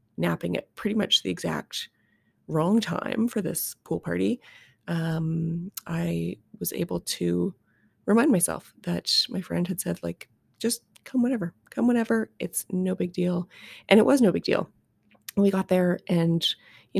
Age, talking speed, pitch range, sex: 20-39, 160 wpm, 155-190 Hz, female